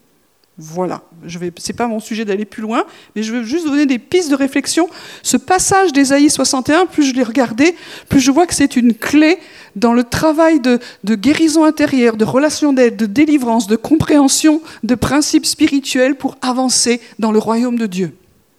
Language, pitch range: French, 230-305 Hz